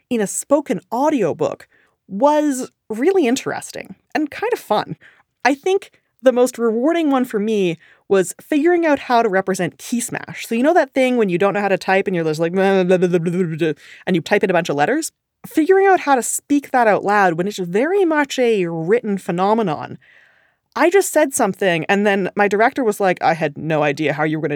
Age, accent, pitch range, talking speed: 20-39, American, 190-285 Hz, 205 wpm